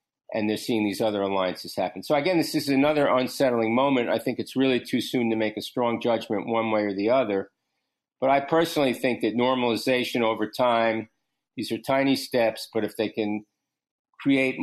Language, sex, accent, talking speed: English, male, American, 195 wpm